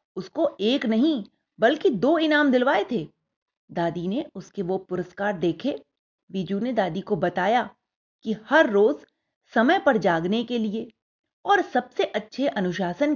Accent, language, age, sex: native, Hindi, 30-49, female